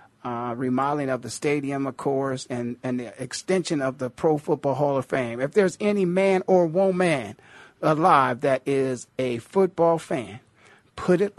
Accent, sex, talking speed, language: American, male, 170 wpm, English